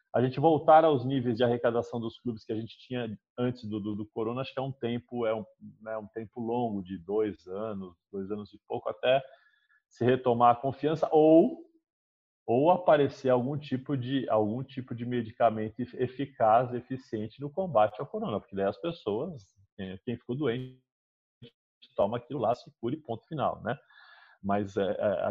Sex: male